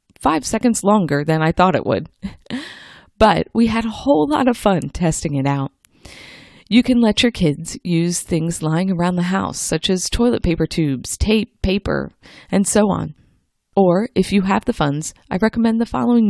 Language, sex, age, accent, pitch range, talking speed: English, female, 20-39, American, 160-205 Hz, 185 wpm